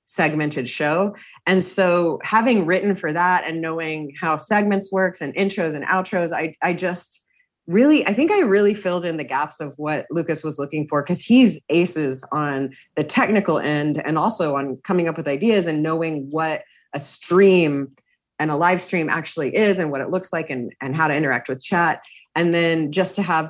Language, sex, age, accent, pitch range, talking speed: English, female, 30-49, American, 155-195 Hz, 195 wpm